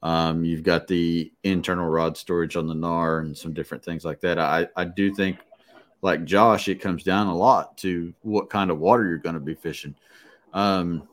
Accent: American